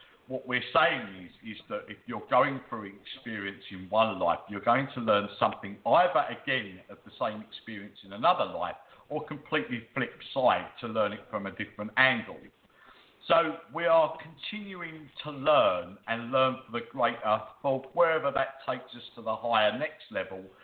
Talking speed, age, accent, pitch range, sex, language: 175 wpm, 50-69, British, 105-140 Hz, male, English